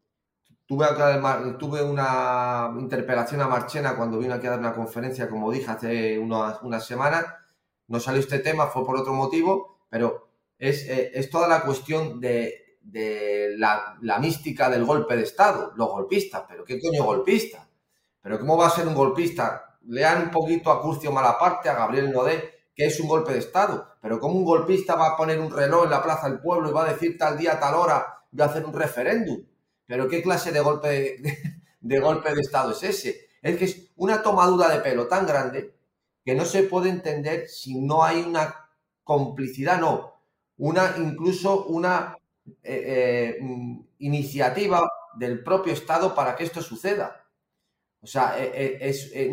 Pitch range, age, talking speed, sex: 130-165 Hz, 30-49, 180 wpm, male